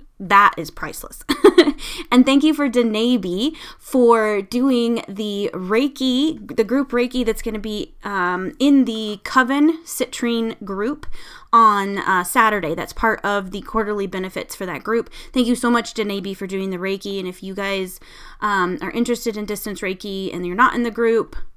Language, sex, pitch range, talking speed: English, female, 200-260 Hz, 170 wpm